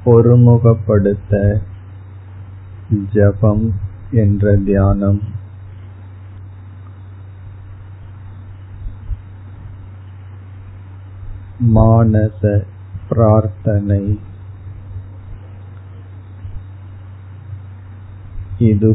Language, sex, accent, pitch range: Tamil, male, native, 95-105 Hz